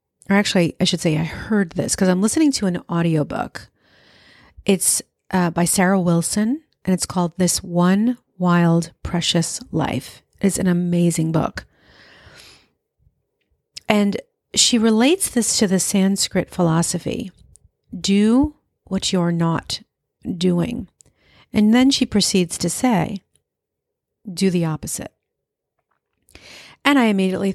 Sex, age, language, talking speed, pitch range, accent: female, 40-59, English, 120 wpm, 170-205 Hz, American